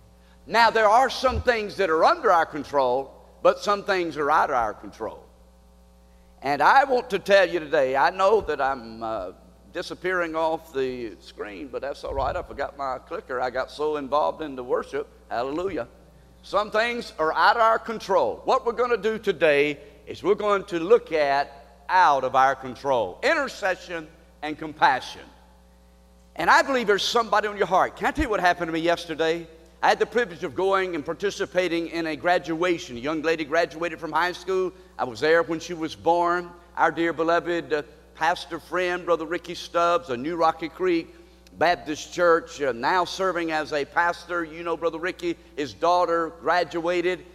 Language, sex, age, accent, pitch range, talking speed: English, male, 50-69, American, 155-195 Hz, 185 wpm